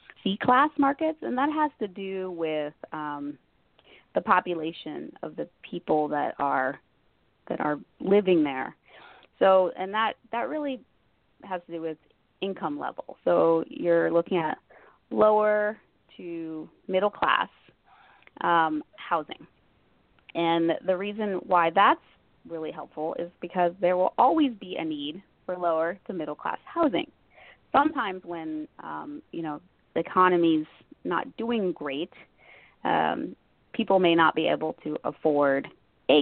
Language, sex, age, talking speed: English, female, 30-49, 135 wpm